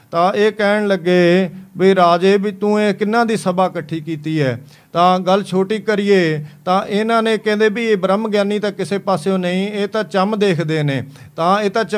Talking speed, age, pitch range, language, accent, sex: 175 wpm, 50-69, 175-200 Hz, English, Indian, male